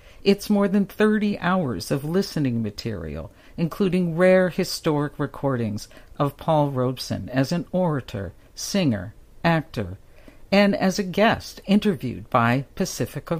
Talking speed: 120 wpm